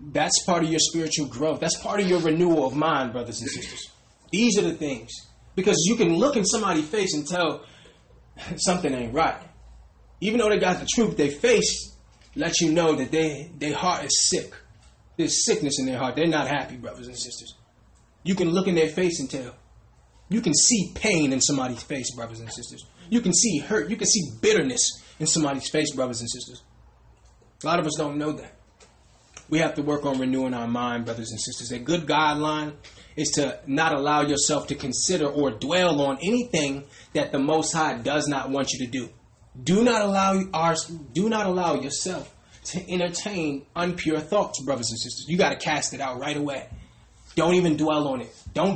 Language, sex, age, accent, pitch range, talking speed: English, male, 20-39, American, 135-180 Hz, 200 wpm